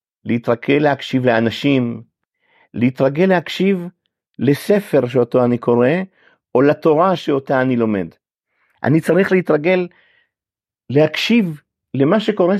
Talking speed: 95 wpm